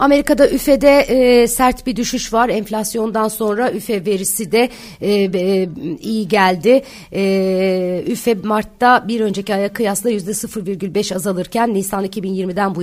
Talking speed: 130 wpm